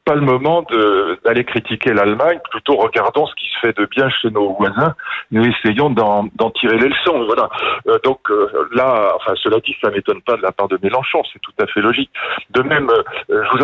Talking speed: 230 wpm